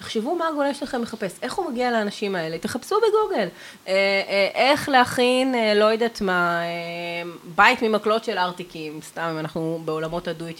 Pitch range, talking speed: 175-225 Hz, 170 wpm